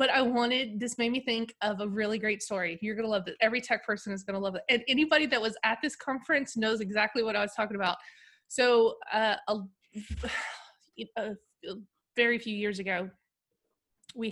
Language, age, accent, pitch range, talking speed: English, 20-39, American, 200-235 Hz, 200 wpm